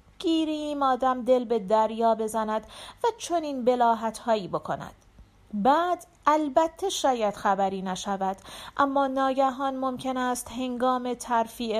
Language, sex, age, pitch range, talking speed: Persian, female, 40-59, 220-285 Hz, 110 wpm